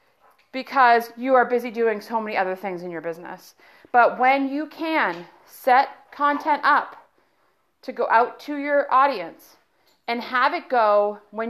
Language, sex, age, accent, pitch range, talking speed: English, female, 30-49, American, 195-255 Hz, 155 wpm